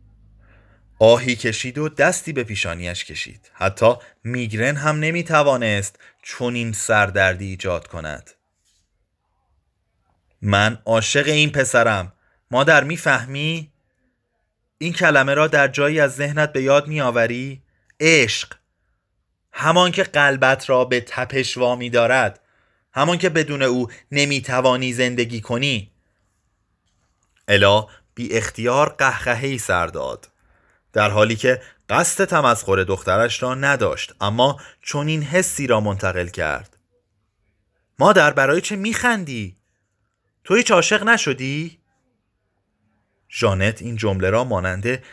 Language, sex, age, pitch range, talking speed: Persian, male, 30-49, 105-145 Hz, 110 wpm